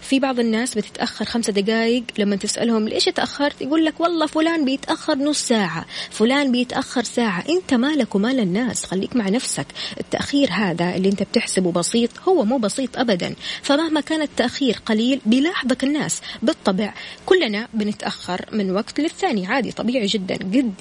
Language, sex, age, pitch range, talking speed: Arabic, female, 20-39, 200-255 Hz, 155 wpm